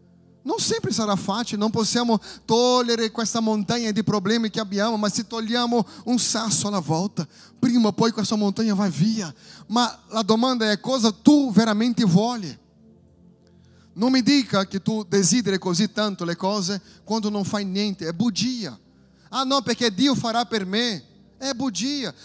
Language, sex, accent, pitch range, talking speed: Italian, male, Brazilian, 215-285 Hz, 160 wpm